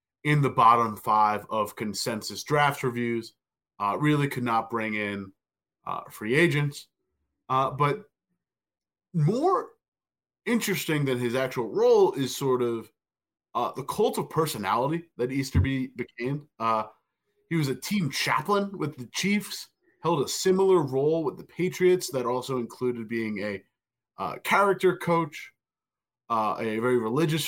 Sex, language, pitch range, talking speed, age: male, English, 115-160 Hz, 140 wpm, 20-39